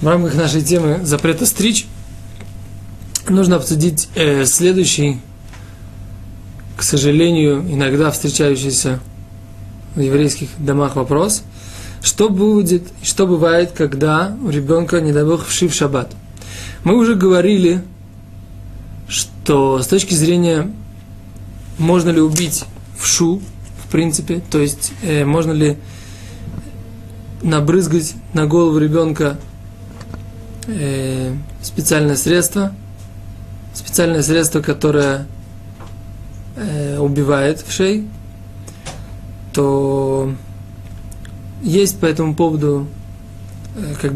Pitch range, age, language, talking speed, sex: 95-160 Hz, 20-39, Russian, 90 wpm, male